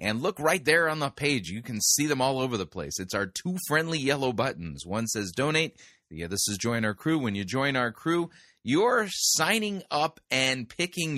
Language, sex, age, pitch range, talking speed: English, male, 30-49, 100-140 Hz, 220 wpm